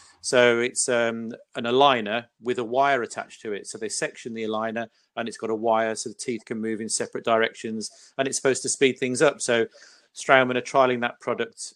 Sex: male